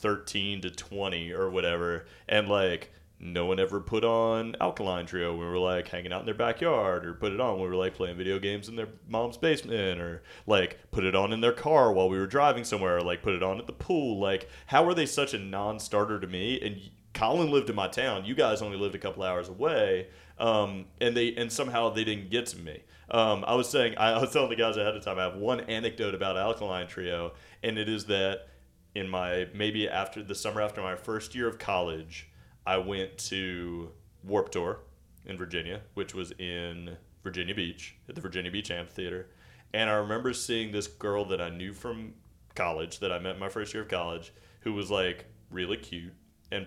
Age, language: 30-49, English